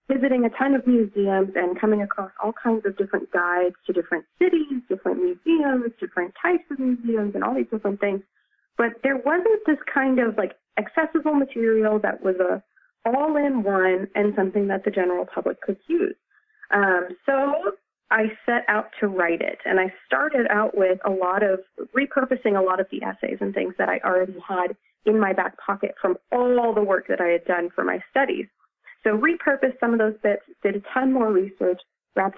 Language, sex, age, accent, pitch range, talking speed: English, female, 30-49, American, 185-250 Hz, 190 wpm